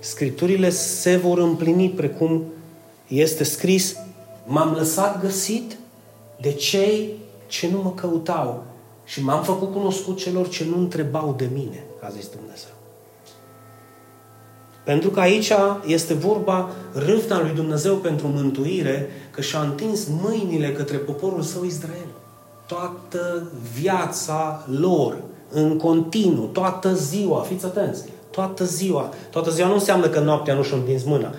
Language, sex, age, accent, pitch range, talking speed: Romanian, male, 30-49, native, 140-190 Hz, 130 wpm